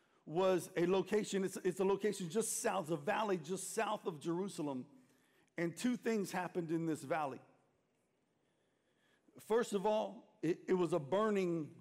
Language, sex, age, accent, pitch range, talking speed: English, male, 50-69, American, 160-210 Hz, 150 wpm